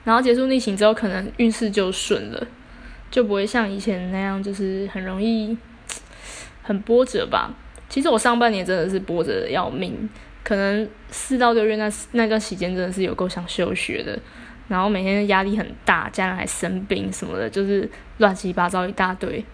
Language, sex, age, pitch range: Chinese, female, 10-29, 195-245 Hz